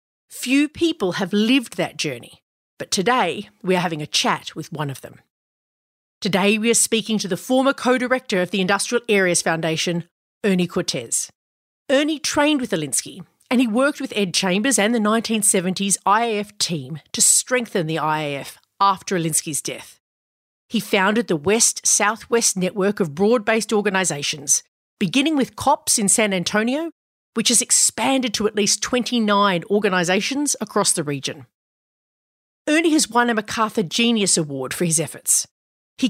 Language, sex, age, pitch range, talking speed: English, female, 40-59, 175-240 Hz, 150 wpm